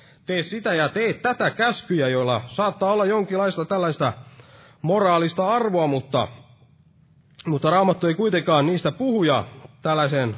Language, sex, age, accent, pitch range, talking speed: Finnish, male, 30-49, native, 130-175 Hz, 125 wpm